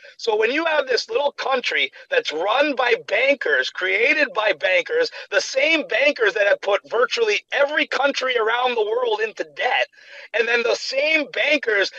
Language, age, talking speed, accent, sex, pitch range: English, 40-59, 165 wpm, American, male, 265-445 Hz